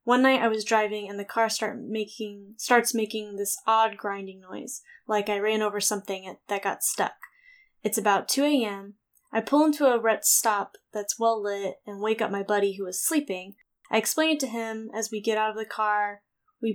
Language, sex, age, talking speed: English, female, 10-29, 205 wpm